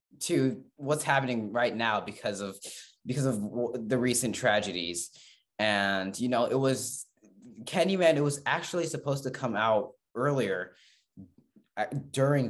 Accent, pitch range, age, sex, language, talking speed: American, 105-130 Hz, 20-39, male, English, 135 wpm